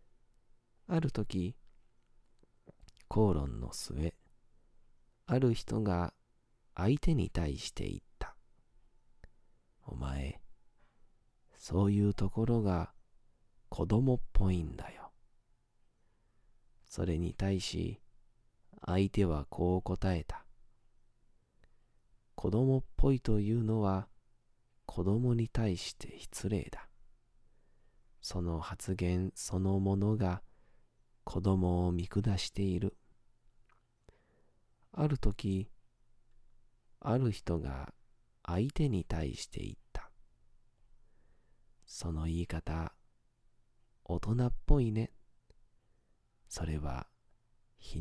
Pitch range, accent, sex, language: 90-115 Hz, native, male, Japanese